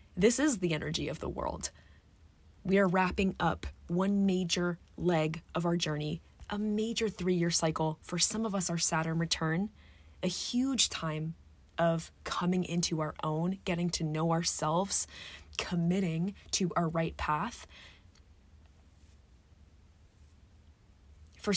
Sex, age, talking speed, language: female, 20-39, 130 wpm, English